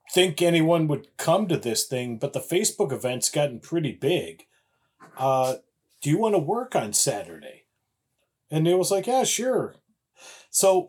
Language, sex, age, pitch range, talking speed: English, male, 40-59, 130-170 Hz, 160 wpm